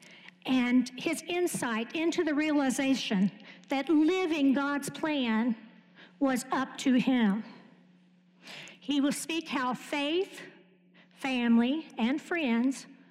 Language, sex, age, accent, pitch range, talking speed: English, female, 50-69, American, 215-270 Hz, 100 wpm